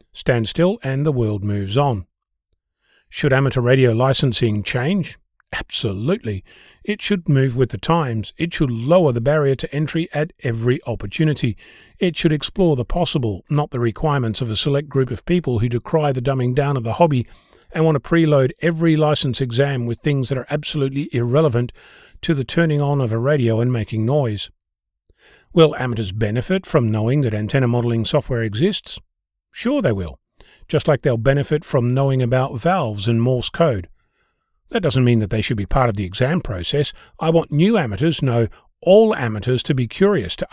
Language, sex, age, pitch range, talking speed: English, male, 40-59, 115-155 Hz, 180 wpm